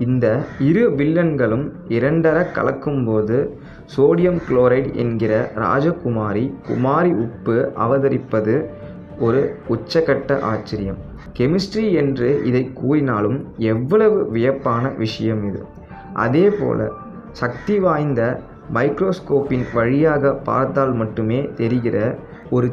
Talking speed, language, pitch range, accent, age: 85 wpm, Tamil, 115-155 Hz, native, 20-39